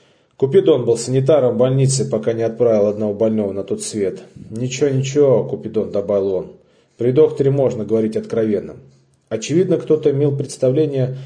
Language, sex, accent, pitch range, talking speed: Russian, male, native, 120-150 Hz, 145 wpm